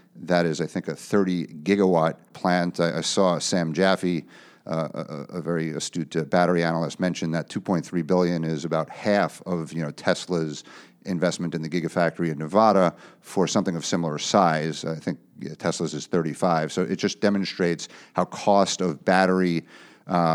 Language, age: English, 50-69